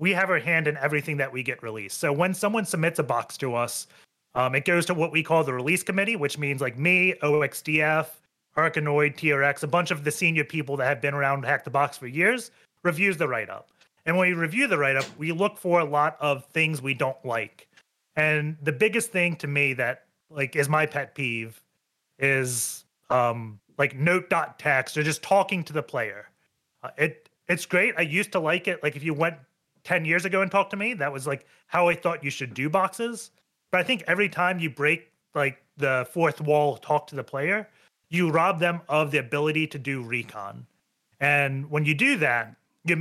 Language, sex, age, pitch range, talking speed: English, male, 30-49, 140-175 Hz, 215 wpm